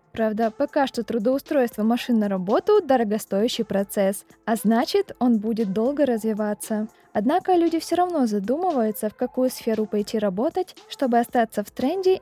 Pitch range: 215-275 Hz